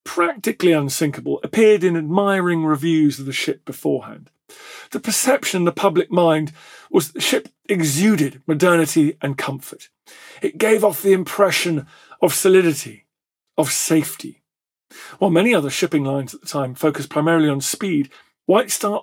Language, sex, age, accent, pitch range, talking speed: English, male, 40-59, British, 155-200 Hz, 150 wpm